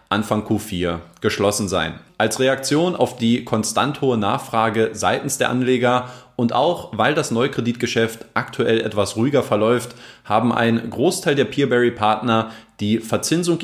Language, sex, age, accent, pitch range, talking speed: German, male, 30-49, German, 110-135 Hz, 130 wpm